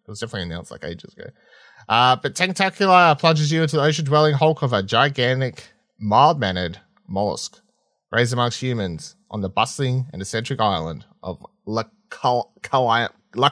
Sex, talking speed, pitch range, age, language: male, 140 wpm, 110-145 Hz, 30-49, English